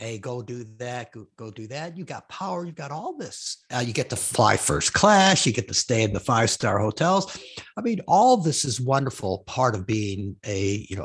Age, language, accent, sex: 50-69, English, American, male